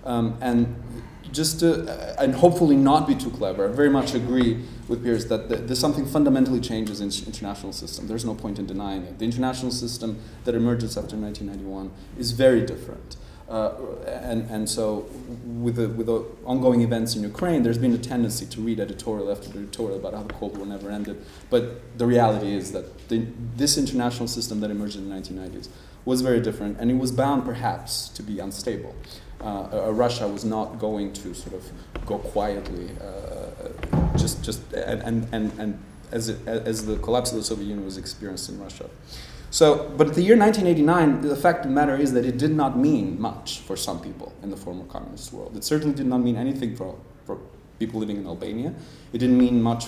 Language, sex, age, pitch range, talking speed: English, male, 30-49, 105-125 Hz, 205 wpm